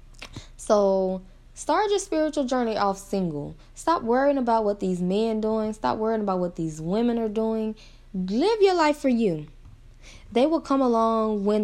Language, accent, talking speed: English, American, 170 wpm